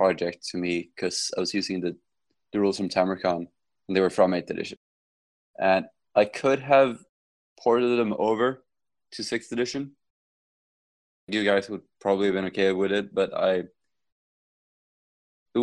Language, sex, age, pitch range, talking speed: English, male, 20-39, 90-100 Hz, 155 wpm